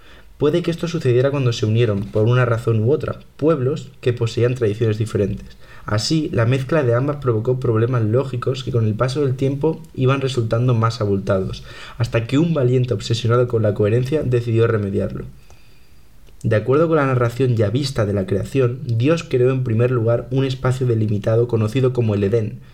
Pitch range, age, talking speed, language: 110-130 Hz, 20-39, 175 wpm, Spanish